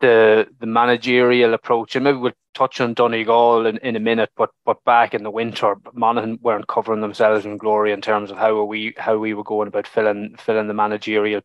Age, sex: 20-39, male